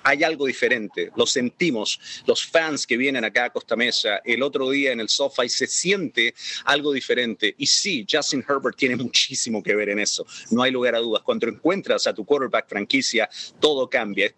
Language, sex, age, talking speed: English, male, 40-59, 195 wpm